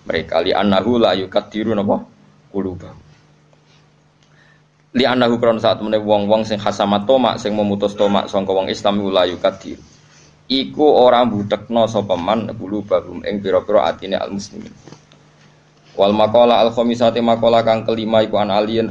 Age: 20-39